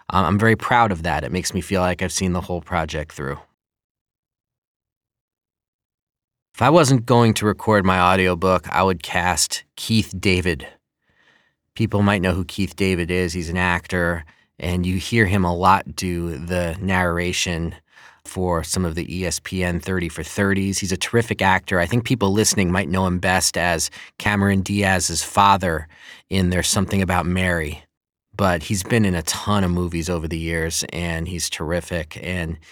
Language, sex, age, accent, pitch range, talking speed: English, male, 30-49, American, 85-95 Hz, 170 wpm